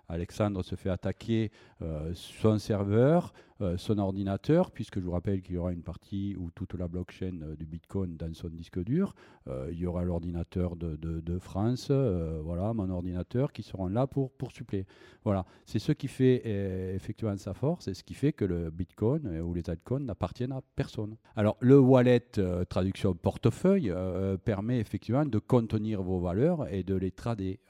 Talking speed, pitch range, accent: 195 wpm, 90-115 Hz, French